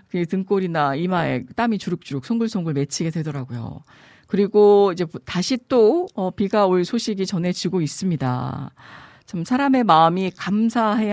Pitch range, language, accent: 155-205 Hz, Korean, native